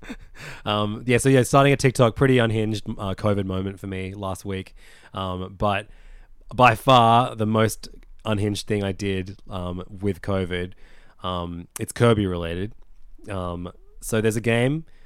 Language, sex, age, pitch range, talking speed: English, male, 20-39, 95-110 Hz, 150 wpm